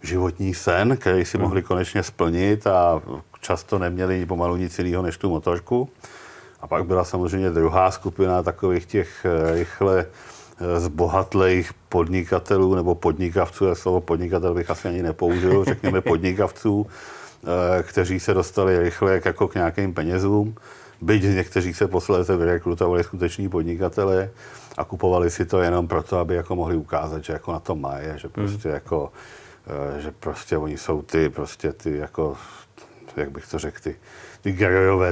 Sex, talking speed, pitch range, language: male, 150 wpm, 85-95 Hz, Czech